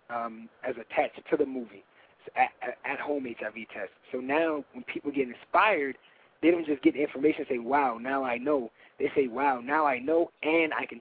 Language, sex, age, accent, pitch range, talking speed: English, male, 20-39, American, 130-155 Hz, 205 wpm